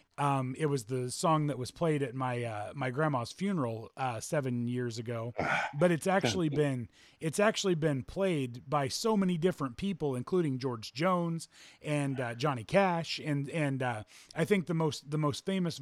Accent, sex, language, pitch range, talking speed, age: American, male, English, 125-155 Hz, 180 wpm, 30-49